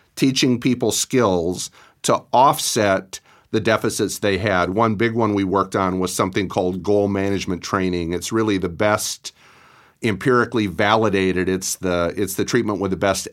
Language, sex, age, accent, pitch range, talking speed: English, male, 40-59, American, 95-115 Hz, 155 wpm